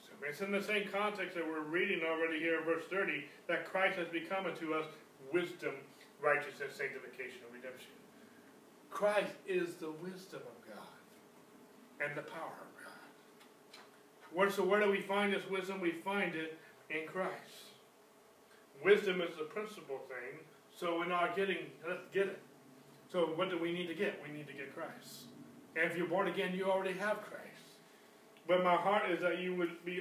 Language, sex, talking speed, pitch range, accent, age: English, male, 175 wpm, 170-205 Hz, American, 40-59